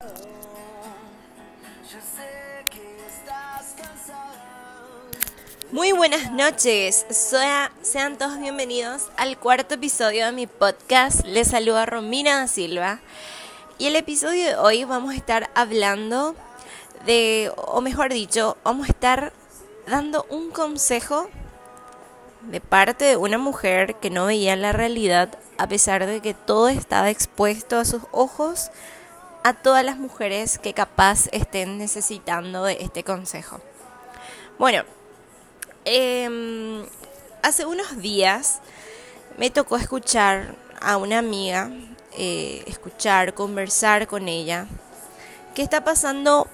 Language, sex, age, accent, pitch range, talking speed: Spanish, female, 20-39, Argentinian, 215-280 Hz, 115 wpm